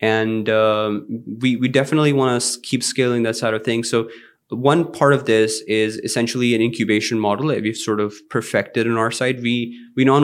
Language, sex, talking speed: English, male, 200 wpm